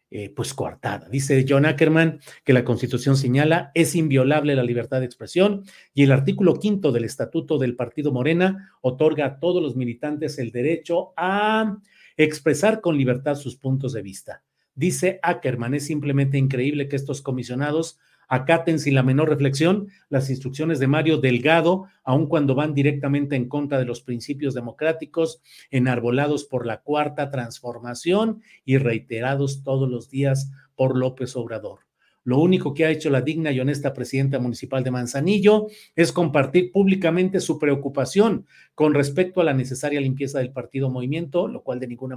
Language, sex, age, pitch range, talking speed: Spanish, male, 40-59, 130-165 Hz, 160 wpm